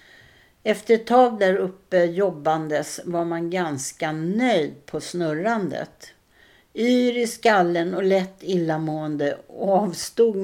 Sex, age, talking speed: female, 60-79, 110 wpm